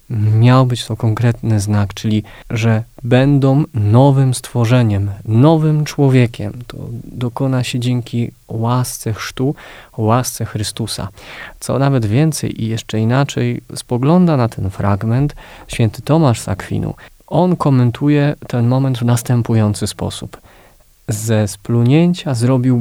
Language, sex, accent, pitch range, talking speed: Polish, male, native, 115-145 Hz, 115 wpm